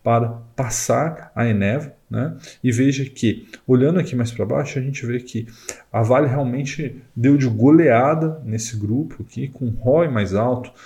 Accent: Brazilian